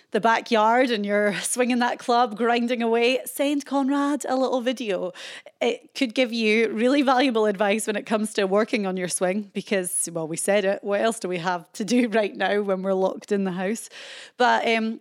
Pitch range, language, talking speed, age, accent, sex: 185-245 Hz, English, 205 wpm, 30-49, British, female